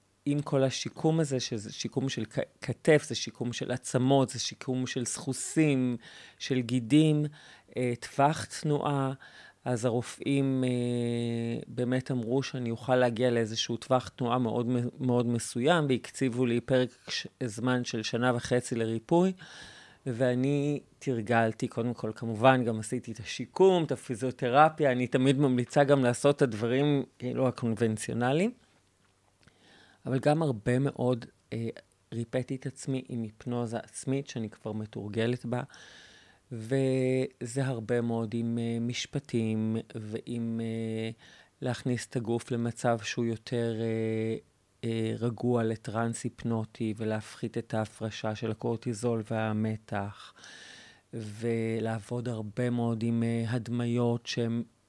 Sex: male